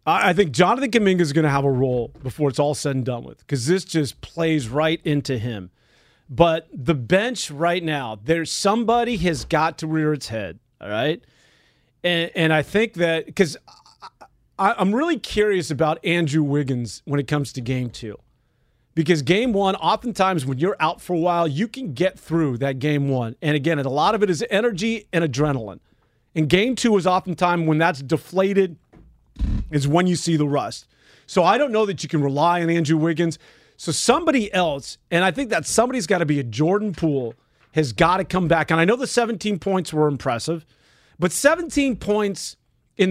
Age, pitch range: 40-59, 145-195 Hz